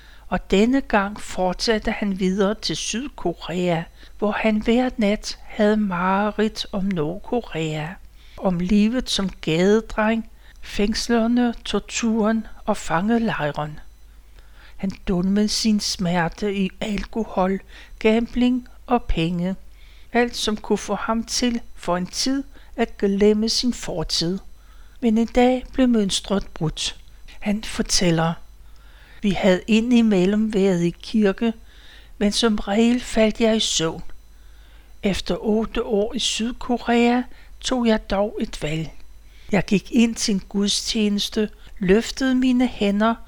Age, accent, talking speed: 60-79, native, 120 wpm